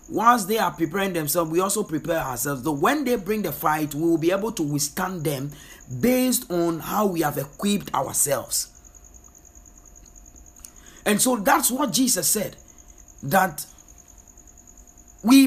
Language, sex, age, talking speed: English, male, 50-69, 145 wpm